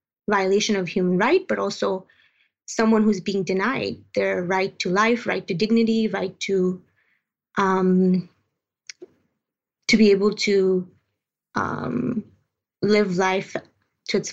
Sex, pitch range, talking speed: female, 185-220 Hz, 120 wpm